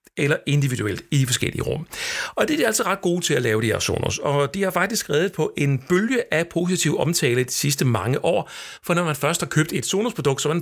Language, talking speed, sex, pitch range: Danish, 250 wpm, male, 135-195 Hz